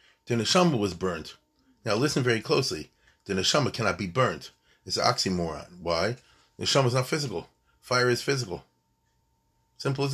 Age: 40-59